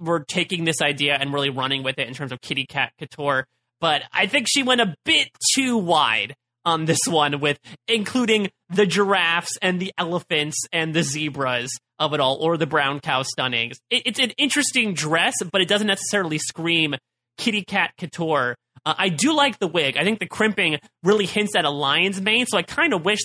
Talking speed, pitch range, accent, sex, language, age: 200 wpm, 145-205 Hz, American, male, English, 30-49